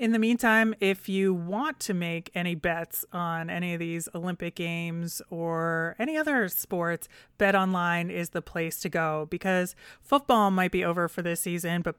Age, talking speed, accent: 30-49, 175 wpm, American